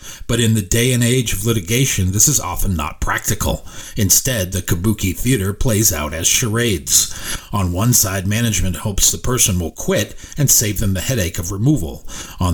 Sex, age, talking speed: male, 40-59, 180 wpm